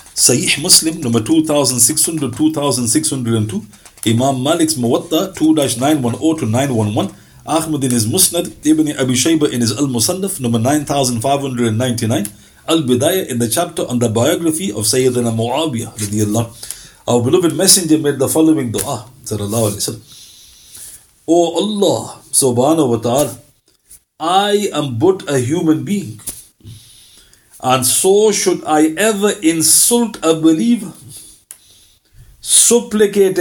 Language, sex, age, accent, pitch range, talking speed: English, male, 50-69, Indian, 115-160 Hz, 110 wpm